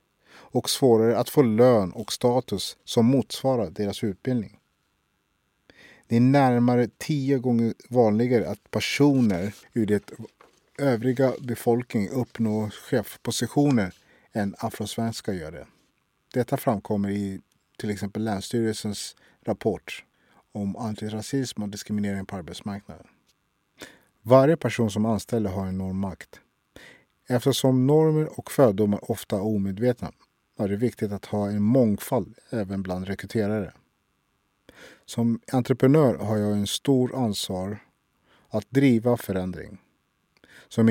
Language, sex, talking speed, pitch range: English, male, 115 wpm, 100-125 Hz